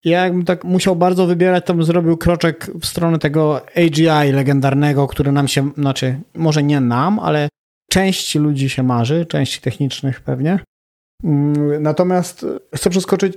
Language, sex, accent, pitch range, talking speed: Polish, male, native, 140-170 Hz, 150 wpm